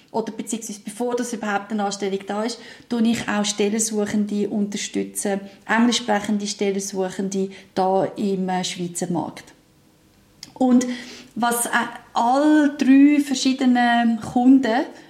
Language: German